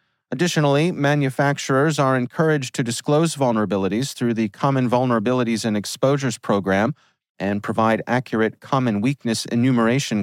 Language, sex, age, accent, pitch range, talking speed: English, male, 40-59, American, 110-145 Hz, 115 wpm